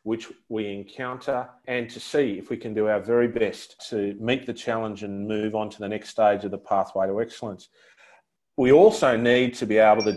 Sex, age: male, 40-59